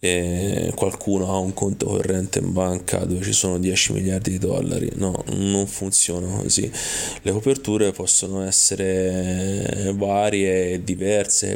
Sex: male